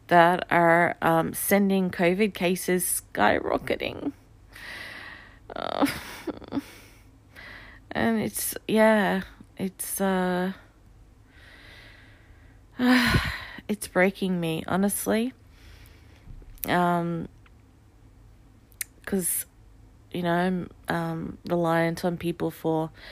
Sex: female